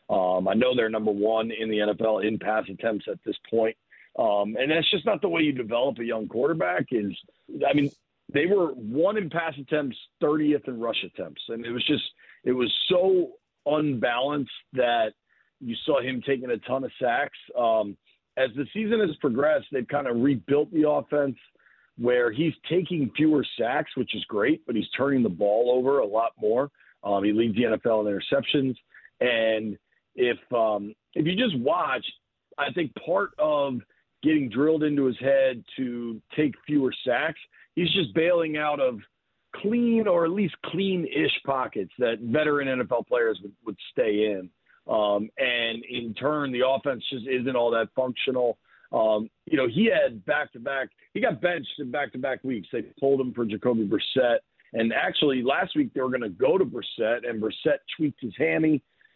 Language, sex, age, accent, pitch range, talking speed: English, male, 40-59, American, 115-150 Hz, 180 wpm